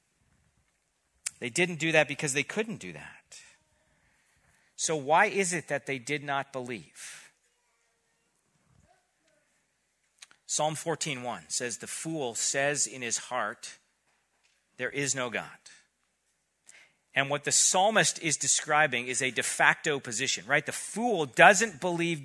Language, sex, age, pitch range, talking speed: English, male, 40-59, 140-185 Hz, 125 wpm